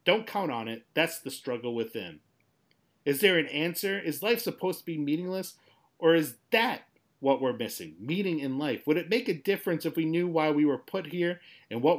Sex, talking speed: male, 210 wpm